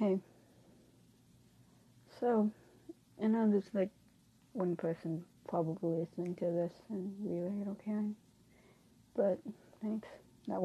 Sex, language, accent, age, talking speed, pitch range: female, English, American, 30-49, 105 wpm, 180-220 Hz